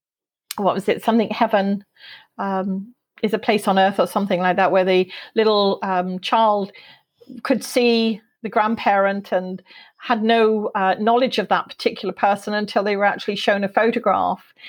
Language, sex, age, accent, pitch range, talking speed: English, female, 40-59, British, 195-250 Hz, 165 wpm